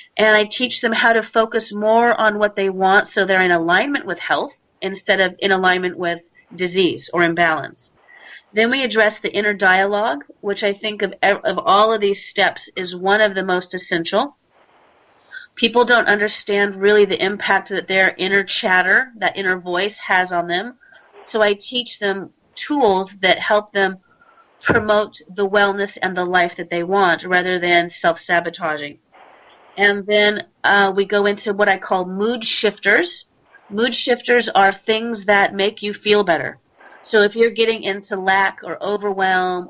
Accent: American